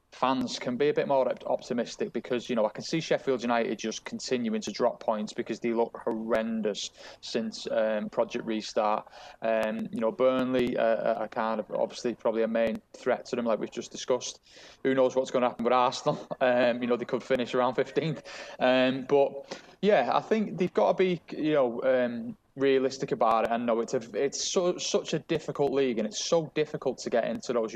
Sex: male